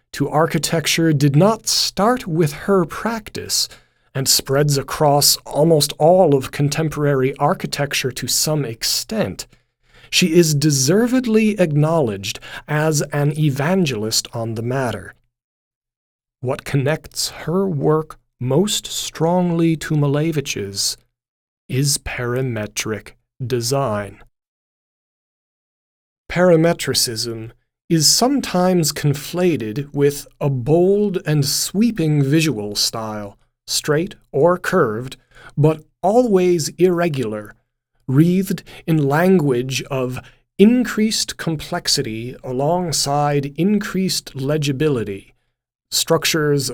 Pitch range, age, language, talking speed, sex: 125-165 Hz, 40-59, English, 85 wpm, male